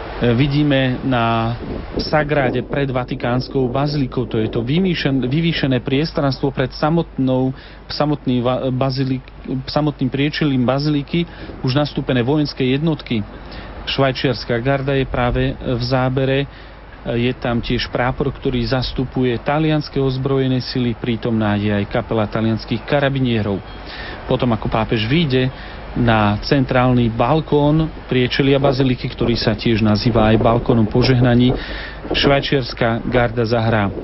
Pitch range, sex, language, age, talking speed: 120-140 Hz, male, Slovak, 40-59, 110 wpm